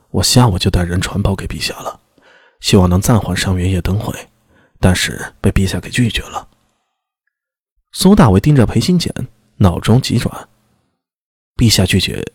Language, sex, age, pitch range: Chinese, male, 20-39, 95-130 Hz